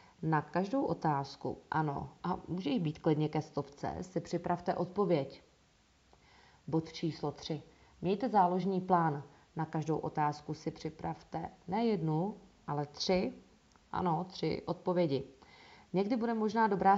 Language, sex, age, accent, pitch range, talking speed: English, female, 30-49, Czech, 160-195 Hz, 125 wpm